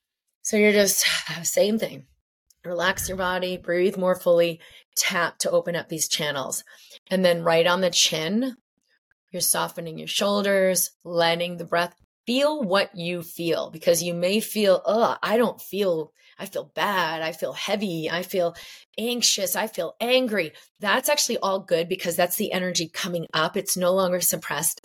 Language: English